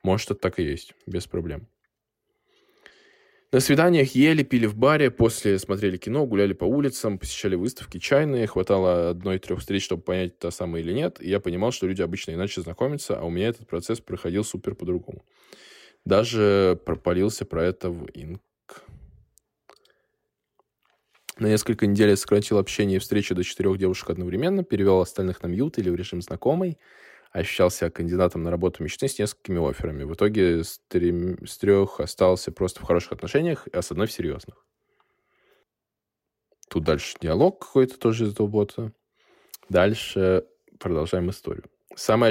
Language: Russian